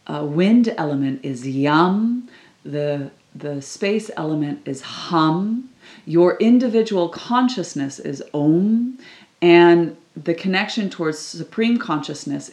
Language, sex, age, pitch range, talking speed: English, female, 30-49, 145-185 Hz, 105 wpm